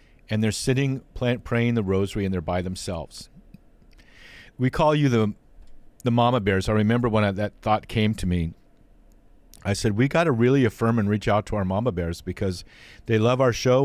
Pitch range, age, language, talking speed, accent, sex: 95-115 Hz, 50-69, English, 195 wpm, American, male